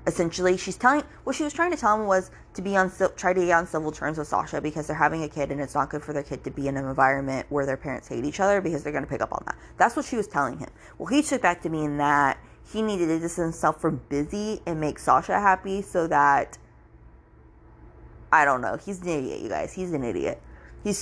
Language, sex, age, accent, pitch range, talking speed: English, female, 20-39, American, 140-185 Hz, 260 wpm